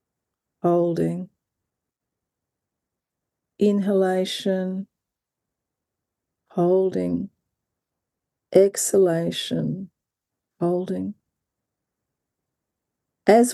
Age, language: 50-69, English